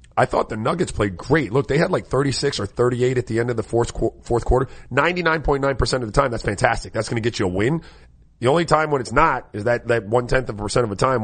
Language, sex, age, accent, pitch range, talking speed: English, male, 40-59, American, 110-135 Hz, 265 wpm